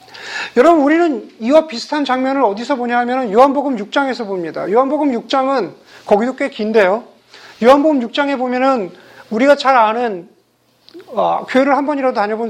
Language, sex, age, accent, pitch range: Korean, male, 40-59, native, 215-290 Hz